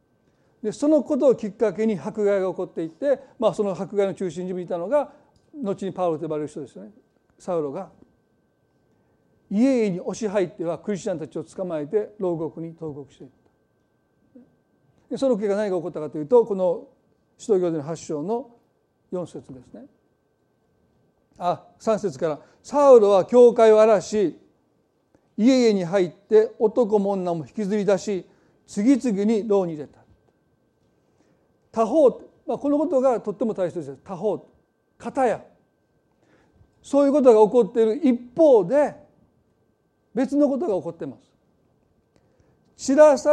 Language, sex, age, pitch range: Japanese, male, 40-59, 180-245 Hz